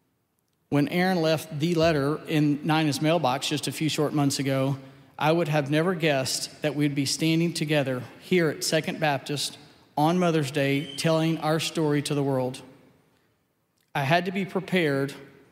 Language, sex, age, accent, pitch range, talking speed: English, male, 40-59, American, 145-165 Hz, 160 wpm